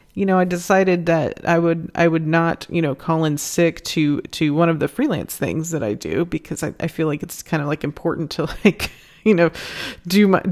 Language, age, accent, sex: English, 30-49, American, female